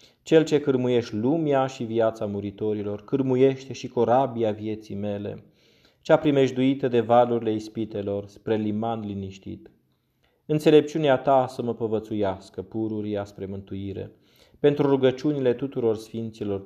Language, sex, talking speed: Romanian, male, 115 wpm